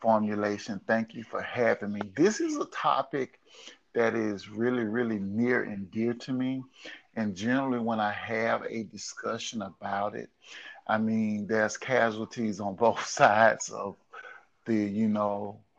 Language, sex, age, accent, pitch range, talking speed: English, male, 50-69, American, 110-130 Hz, 150 wpm